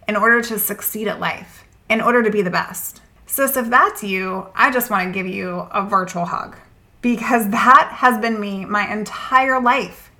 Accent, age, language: American, 20-39, English